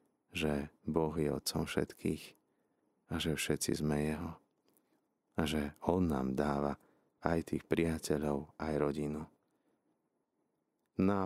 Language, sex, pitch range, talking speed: Slovak, male, 75-90 Hz, 110 wpm